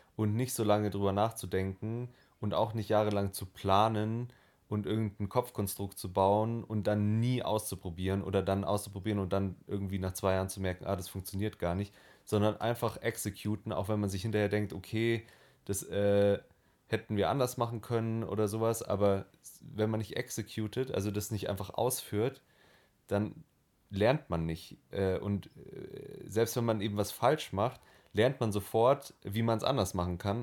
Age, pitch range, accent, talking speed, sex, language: 30-49, 95-115 Hz, German, 170 wpm, male, German